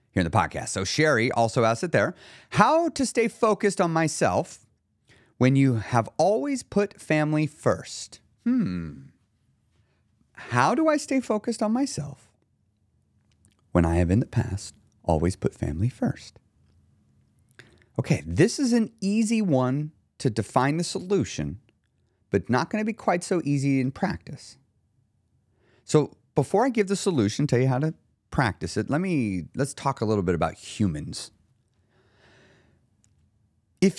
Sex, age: male, 30-49